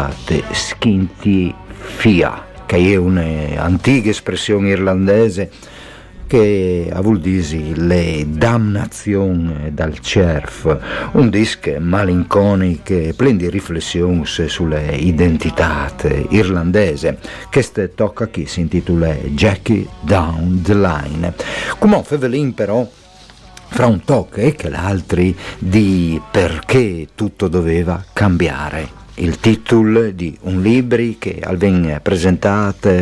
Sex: male